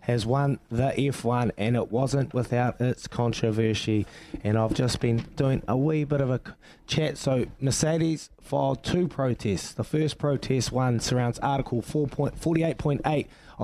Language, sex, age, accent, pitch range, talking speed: English, male, 20-39, Australian, 110-140 Hz, 145 wpm